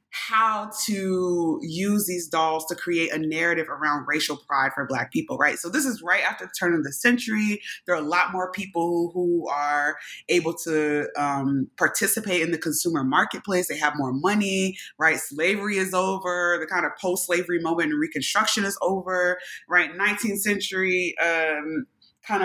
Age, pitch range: 20-39, 160-205 Hz